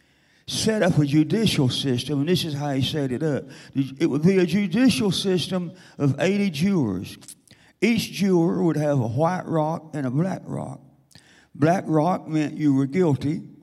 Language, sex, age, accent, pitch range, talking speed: English, male, 50-69, American, 140-170 Hz, 170 wpm